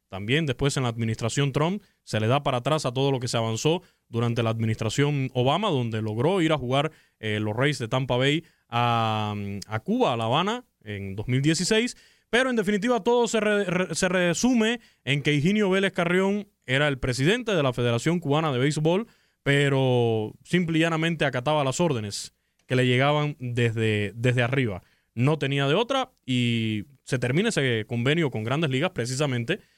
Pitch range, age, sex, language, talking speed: 120-170 Hz, 20-39, male, Spanish, 175 wpm